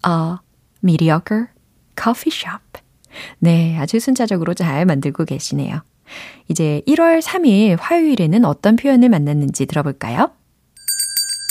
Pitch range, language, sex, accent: 160-260 Hz, Korean, female, native